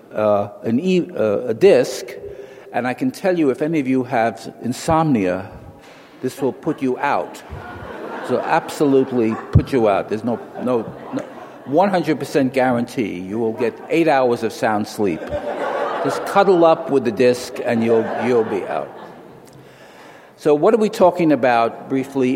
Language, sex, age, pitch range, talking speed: English, male, 60-79, 115-150 Hz, 165 wpm